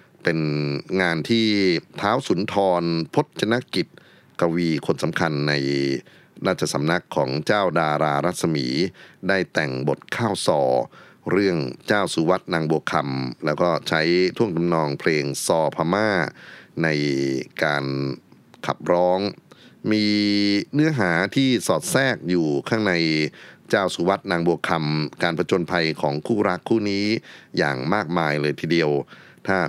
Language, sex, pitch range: Thai, male, 75-90 Hz